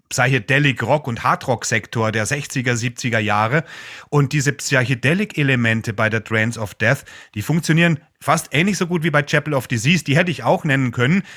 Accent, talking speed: German, 170 wpm